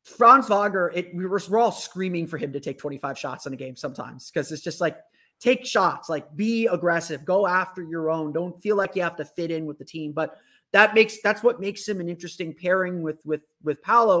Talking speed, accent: 240 wpm, American